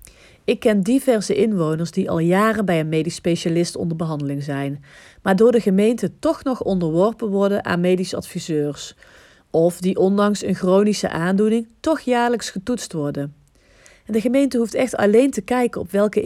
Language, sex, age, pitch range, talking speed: Dutch, female, 40-59, 160-210 Hz, 165 wpm